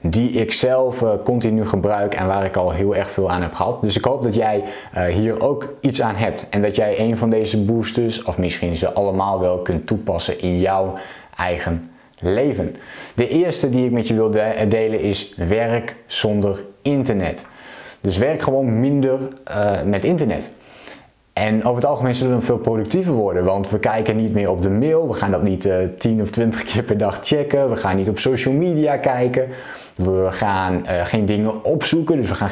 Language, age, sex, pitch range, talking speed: Dutch, 20-39, male, 100-125 Hz, 195 wpm